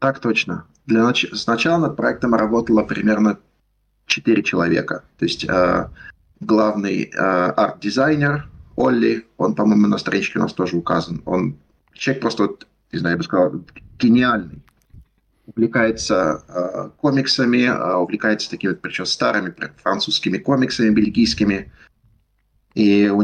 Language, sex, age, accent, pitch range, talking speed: Russian, male, 30-49, native, 100-125 Hz, 125 wpm